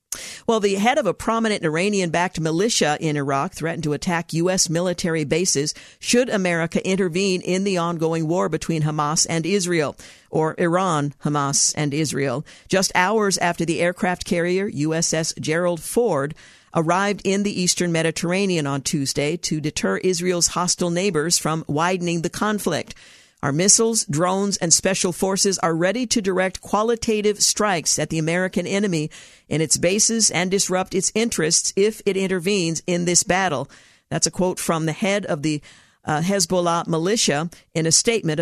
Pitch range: 160-195 Hz